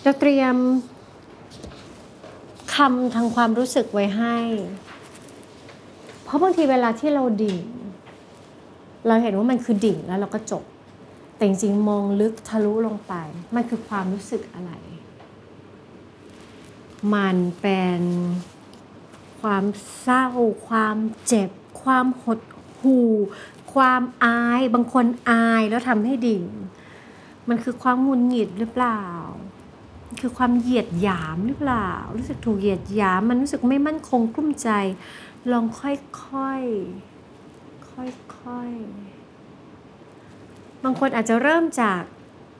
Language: Thai